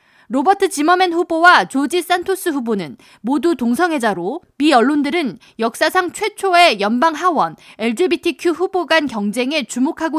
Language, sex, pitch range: Korean, female, 265-350 Hz